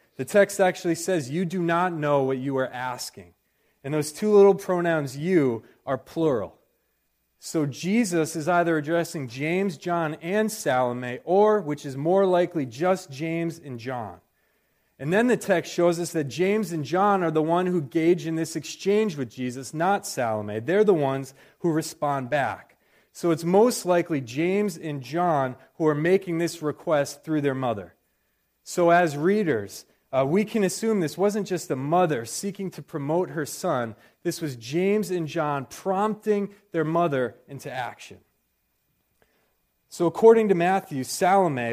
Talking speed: 160 wpm